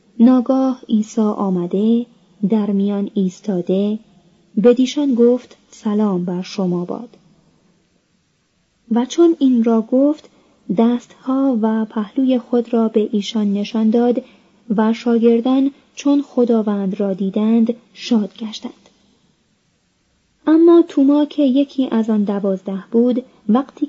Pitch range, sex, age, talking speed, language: 200-245 Hz, female, 30-49, 110 wpm, Persian